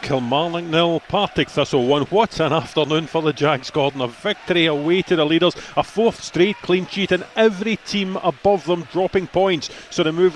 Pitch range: 165-195 Hz